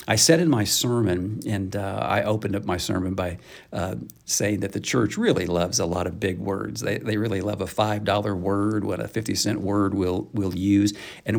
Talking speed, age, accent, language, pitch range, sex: 210 wpm, 50-69, American, English, 105-130 Hz, male